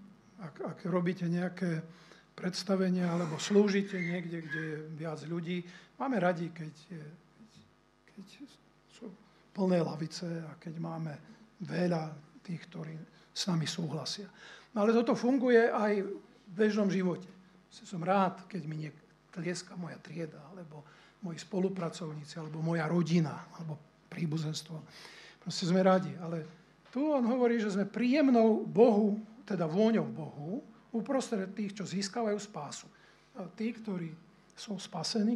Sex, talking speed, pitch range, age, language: male, 130 wpm, 170-210 Hz, 50-69, Slovak